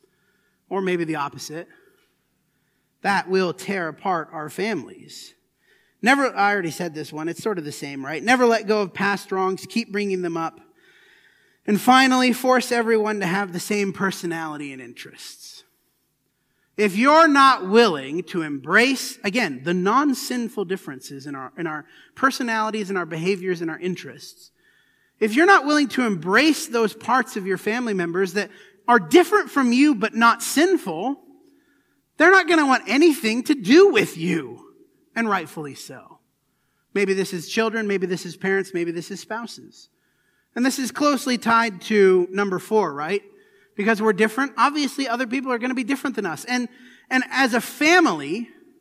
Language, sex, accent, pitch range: English, male, American, 190-275 Hz